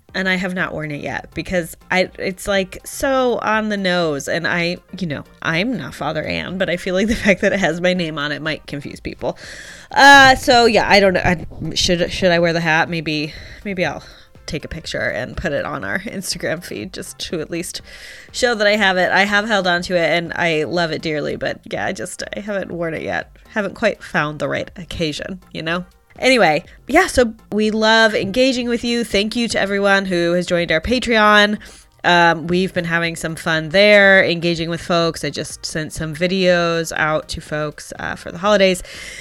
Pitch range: 165-200 Hz